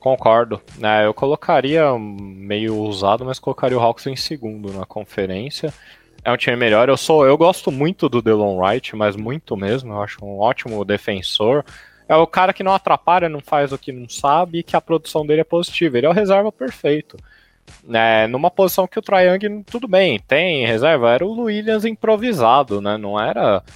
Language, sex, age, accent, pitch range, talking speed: Portuguese, male, 20-39, Brazilian, 120-185 Hz, 190 wpm